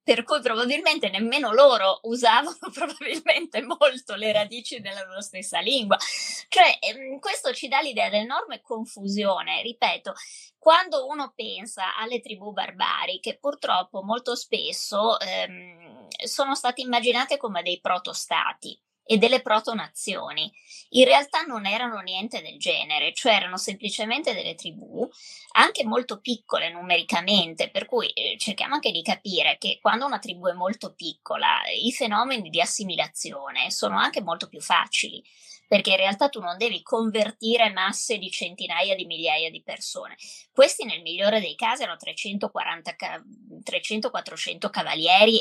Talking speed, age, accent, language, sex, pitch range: 135 wpm, 20-39, native, Italian, female, 190-260 Hz